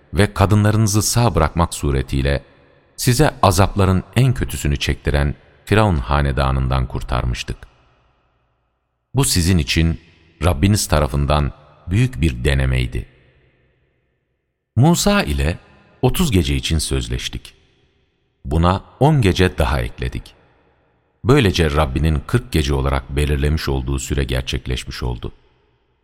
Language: Turkish